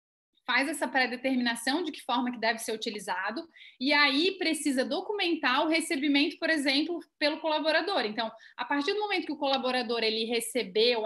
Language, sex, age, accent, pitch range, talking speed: Portuguese, female, 30-49, Brazilian, 245-310 Hz, 165 wpm